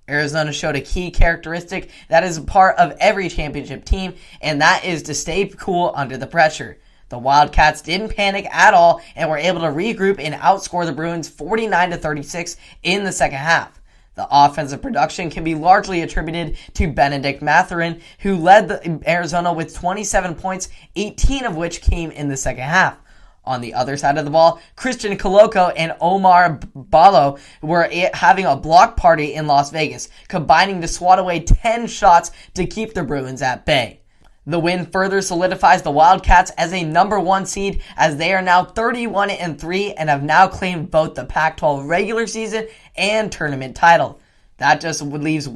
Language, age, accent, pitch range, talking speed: English, 10-29, American, 150-190 Hz, 170 wpm